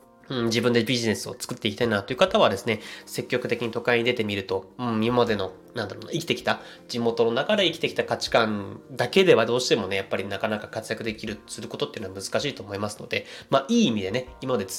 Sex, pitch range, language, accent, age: male, 105-155 Hz, Japanese, native, 20-39